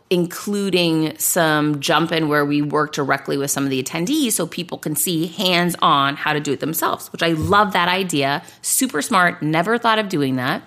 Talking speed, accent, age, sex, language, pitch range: 200 wpm, American, 30-49, female, English, 155-200 Hz